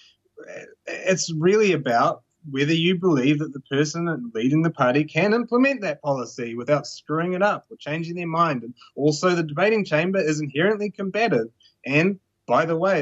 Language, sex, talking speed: English, male, 165 wpm